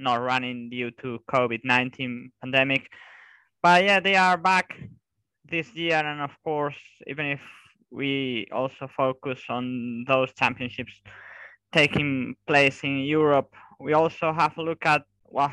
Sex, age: male, 20-39